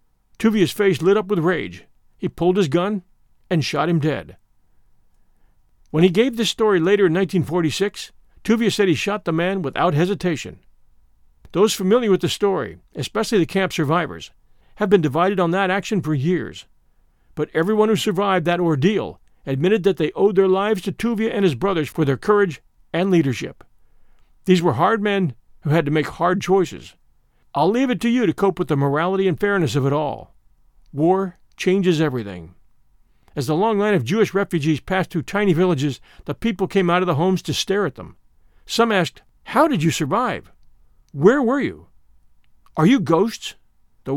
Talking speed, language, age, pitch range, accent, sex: 180 wpm, English, 50-69, 155-200 Hz, American, male